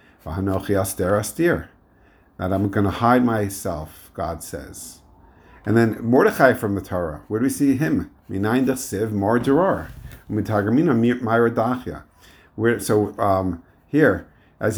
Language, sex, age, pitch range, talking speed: English, male, 50-69, 95-115 Hz, 95 wpm